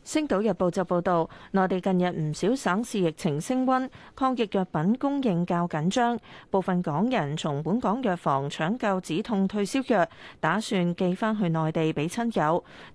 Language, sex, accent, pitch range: Chinese, female, native, 165-225 Hz